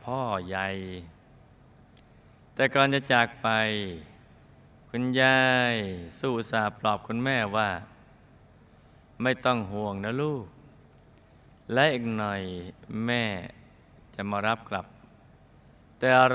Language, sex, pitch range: Thai, male, 110-130 Hz